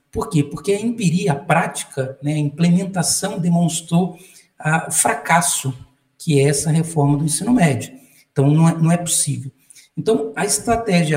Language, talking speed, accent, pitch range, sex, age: Portuguese, 150 wpm, Brazilian, 145-175 Hz, male, 60-79